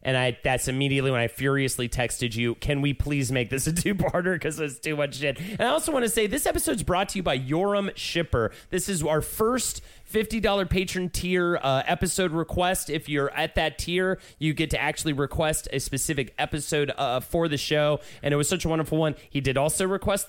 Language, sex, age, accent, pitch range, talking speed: English, male, 30-49, American, 145-195 Hz, 215 wpm